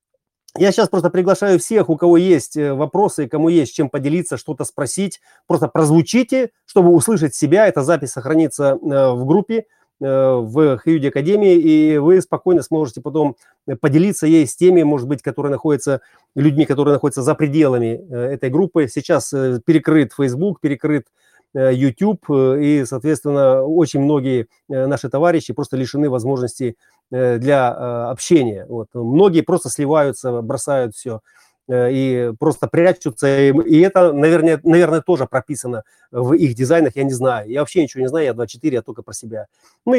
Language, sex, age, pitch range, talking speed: Russian, male, 30-49, 130-170 Hz, 145 wpm